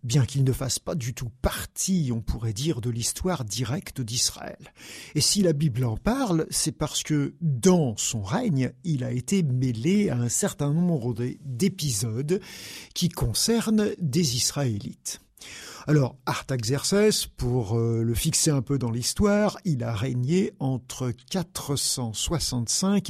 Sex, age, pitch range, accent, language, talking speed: male, 50-69, 125-180 Hz, French, French, 140 wpm